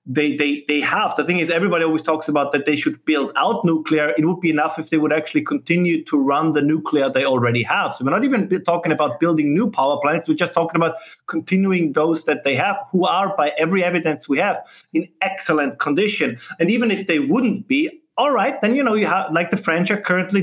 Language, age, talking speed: English, 30-49, 235 wpm